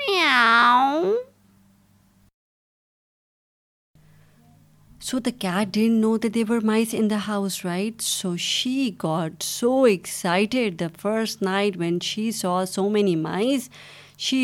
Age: 30-49